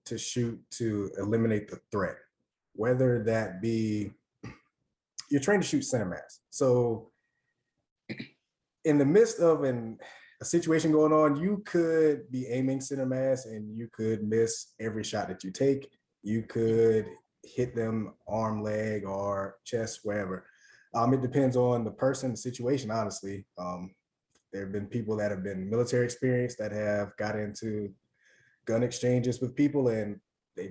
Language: English